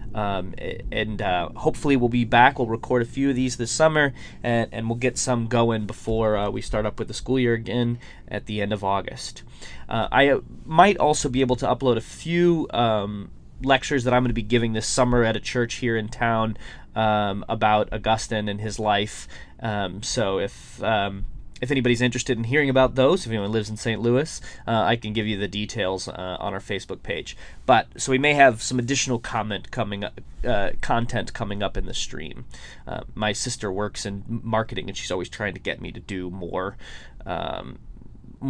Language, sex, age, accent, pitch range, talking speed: English, male, 20-39, American, 105-125 Hz, 205 wpm